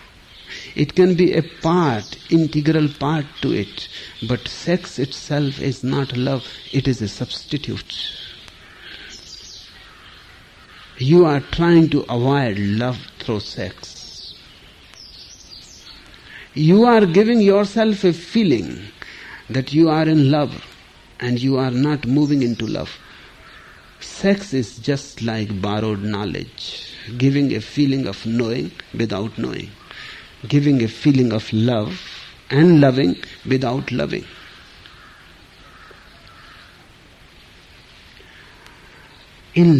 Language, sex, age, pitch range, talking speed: English, male, 60-79, 115-155 Hz, 105 wpm